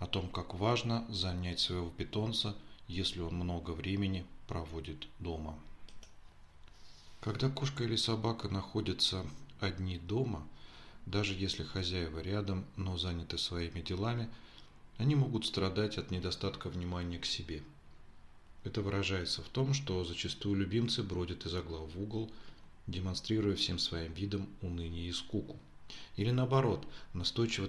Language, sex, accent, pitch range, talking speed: Russian, male, native, 85-105 Hz, 125 wpm